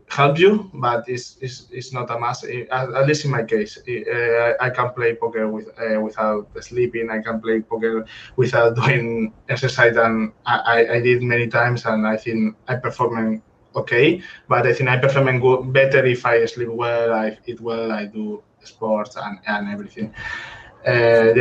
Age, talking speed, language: 20-39, 185 wpm, English